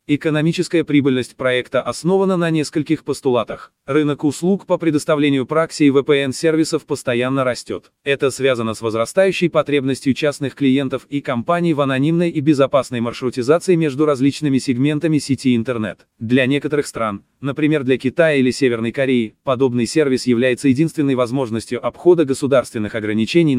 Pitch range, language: 125-155 Hz, Russian